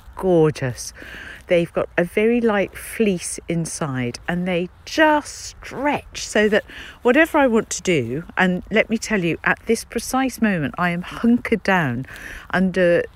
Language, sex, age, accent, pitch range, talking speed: English, female, 50-69, British, 160-205 Hz, 150 wpm